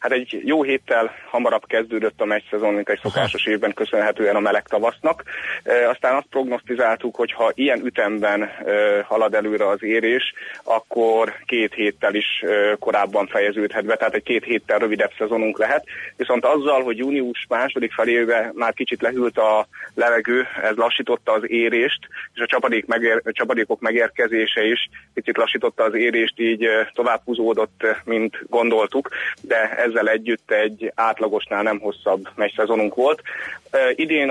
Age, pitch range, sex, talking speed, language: 30-49, 105-120 Hz, male, 150 wpm, Hungarian